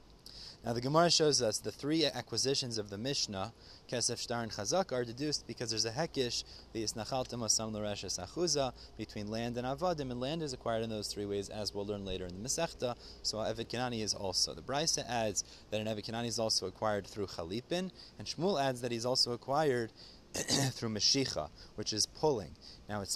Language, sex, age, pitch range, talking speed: English, male, 30-49, 105-130 Hz, 180 wpm